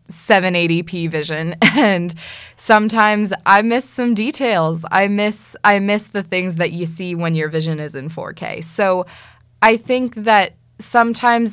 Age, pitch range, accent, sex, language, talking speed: 20-39, 165-200 Hz, American, female, English, 145 wpm